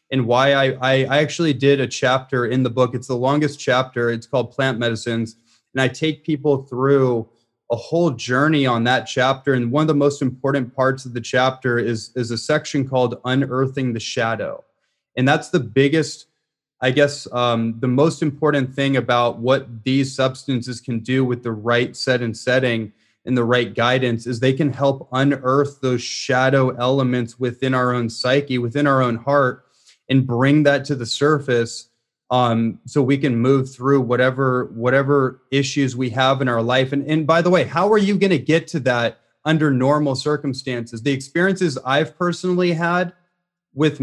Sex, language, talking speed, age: male, English, 180 wpm, 30-49